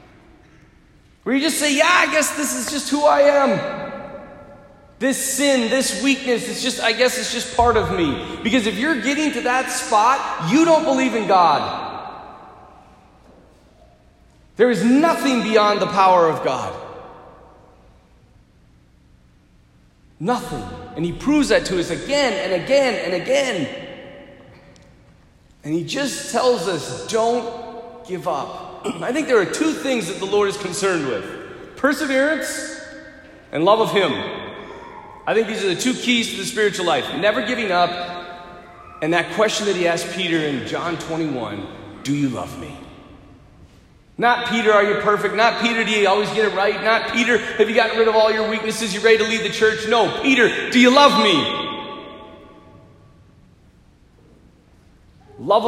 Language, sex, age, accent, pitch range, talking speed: English, male, 30-49, American, 195-280 Hz, 160 wpm